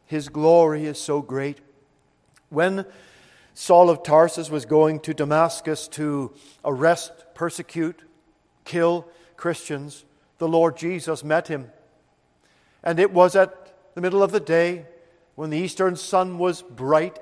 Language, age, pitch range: English, 50-69, 150-180 Hz